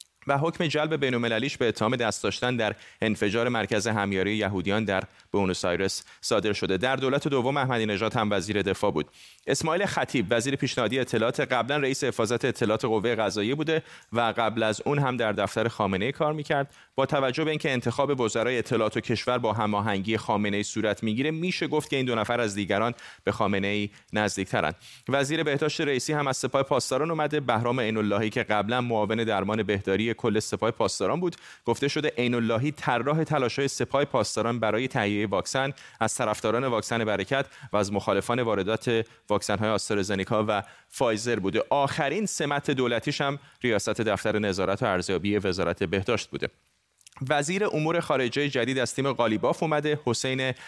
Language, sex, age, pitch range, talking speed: Persian, male, 30-49, 105-140 Hz, 170 wpm